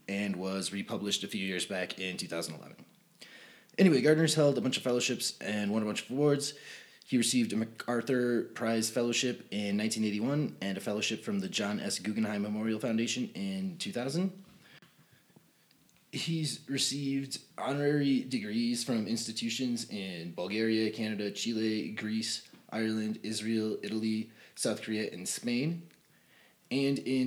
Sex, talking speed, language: male, 135 wpm, English